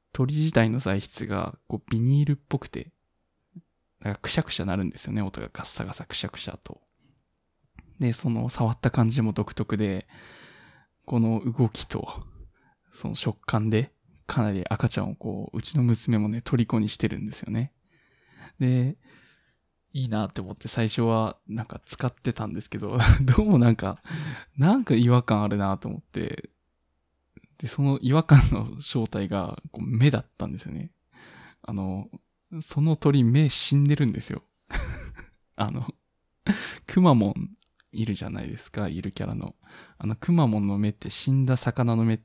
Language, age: Japanese, 20-39